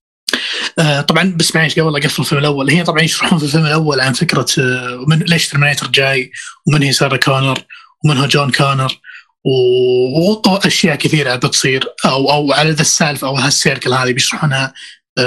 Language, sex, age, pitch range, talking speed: Arabic, male, 20-39, 135-165 Hz, 155 wpm